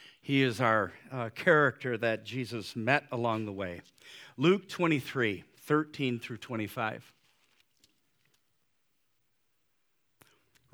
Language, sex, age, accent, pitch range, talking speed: English, male, 50-69, American, 130-185 Hz, 90 wpm